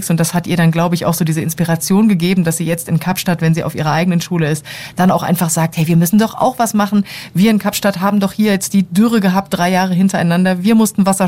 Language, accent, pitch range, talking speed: German, German, 165-195 Hz, 270 wpm